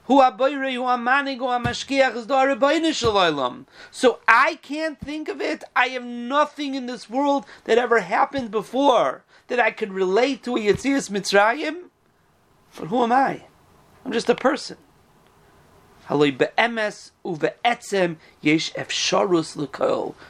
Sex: male